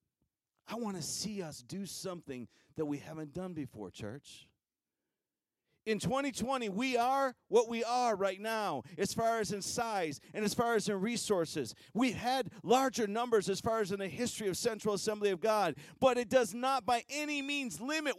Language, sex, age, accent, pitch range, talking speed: English, male, 40-59, American, 210-275 Hz, 185 wpm